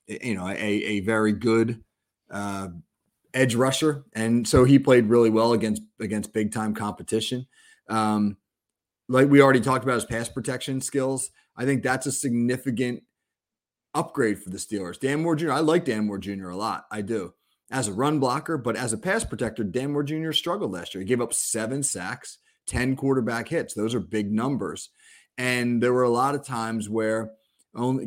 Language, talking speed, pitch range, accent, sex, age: English, 185 wpm, 110-130 Hz, American, male, 30-49